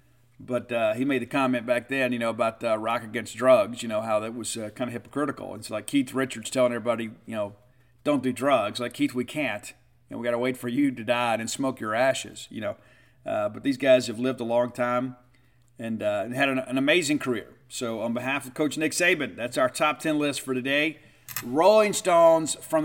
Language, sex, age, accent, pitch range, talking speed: English, male, 50-69, American, 120-140 Hz, 235 wpm